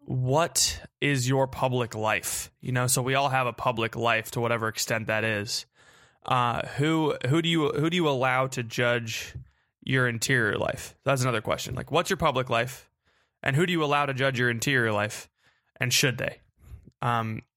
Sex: male